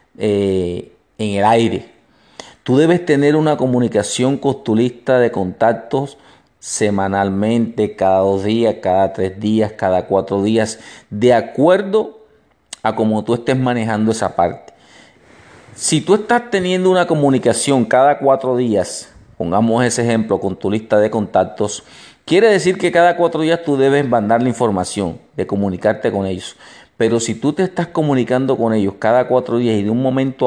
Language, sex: Spanish, male